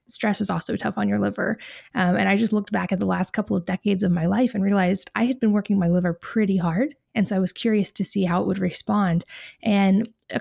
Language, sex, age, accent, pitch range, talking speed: English, female, 20-39, American, 185-220 Hz, 260 wpm